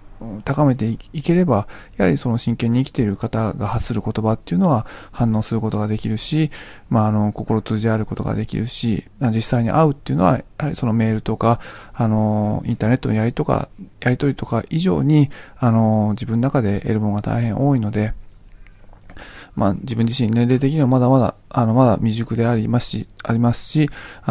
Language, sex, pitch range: Japanese, male, 105-130 Hz